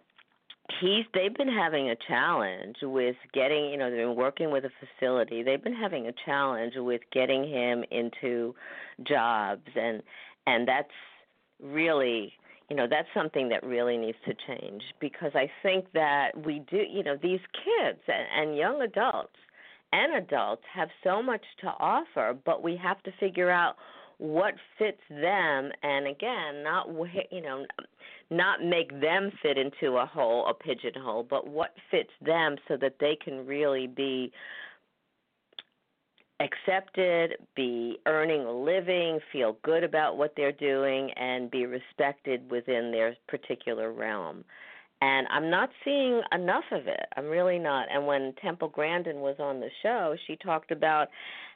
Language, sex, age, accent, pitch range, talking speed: English, female, 50-69, American, 130-175 Hz, 150 wpm